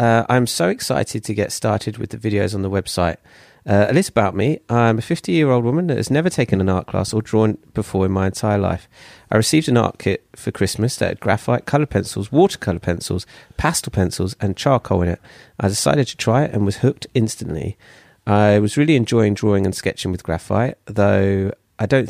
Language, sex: English, male